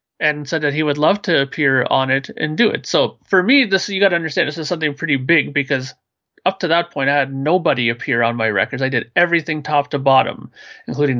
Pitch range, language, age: 140-175 Hz, English, 30-49